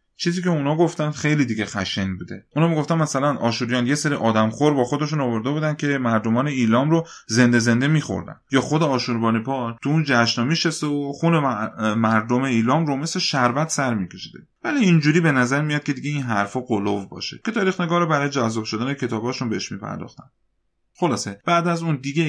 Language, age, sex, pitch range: Persian, 30-49, male, 110-155 Hz